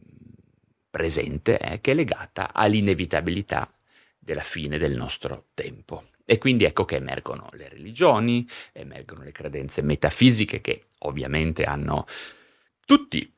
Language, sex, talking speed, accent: Italian, male, 115 wpm, native